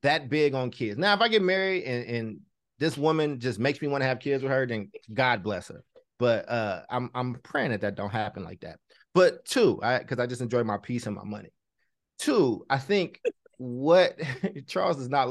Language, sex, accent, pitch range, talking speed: English, male, American, 110-135 Hz, 220 wpm